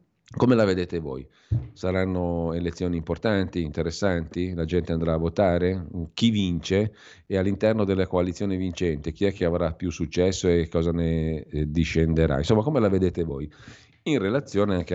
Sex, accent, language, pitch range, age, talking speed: male, native, Italian, 75-95 Hz, 50-69, 155 wpm